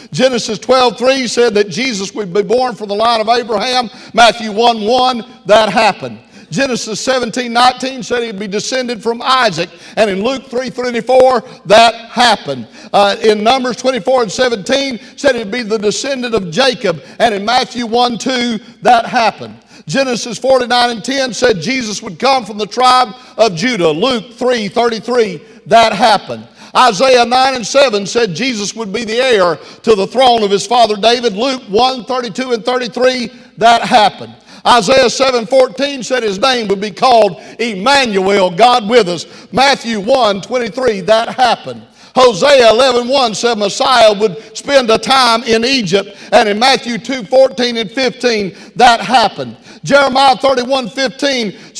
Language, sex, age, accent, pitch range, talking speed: English, male, 50-69, American, 220-255 Hz, 155 wpm